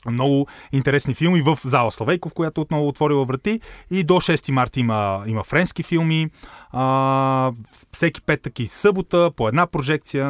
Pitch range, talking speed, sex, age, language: 120-160 Hz, 150 wpm, male, 30-49, Bulgarian